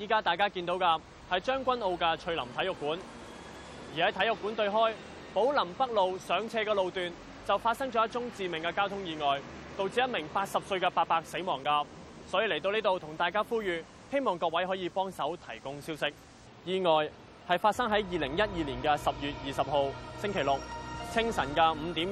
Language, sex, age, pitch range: Chinese, male, 20-39, 155-205 Hz